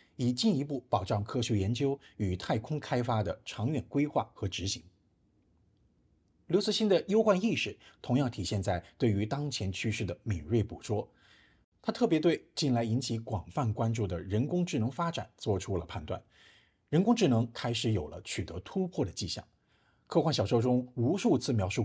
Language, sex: Chinese, male